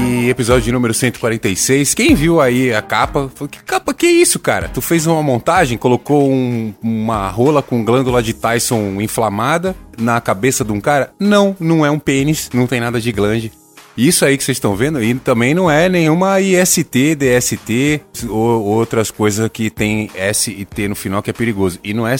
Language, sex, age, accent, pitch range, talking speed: Portuguese, male, 20-39, Brazilian, 110-145 Hz, 195 wpm